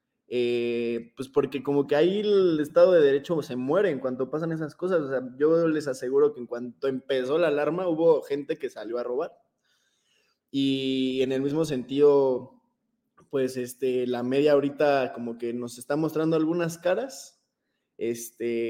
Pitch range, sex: 130-160 Hz, male